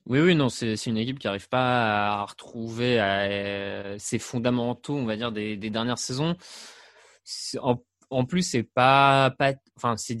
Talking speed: 155 wpm